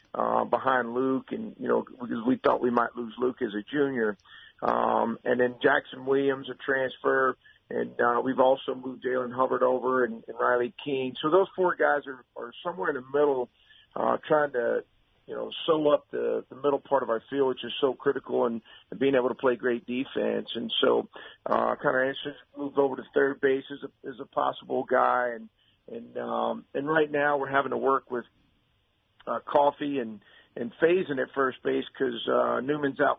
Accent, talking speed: American, 200 wpm